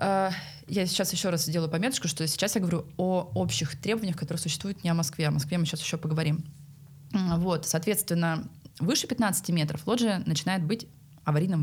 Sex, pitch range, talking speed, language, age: female, 150-195 Hz, 165 wpm, Russian, 20-39